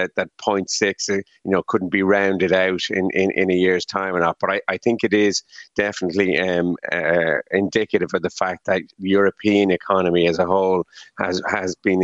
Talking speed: 195 wpm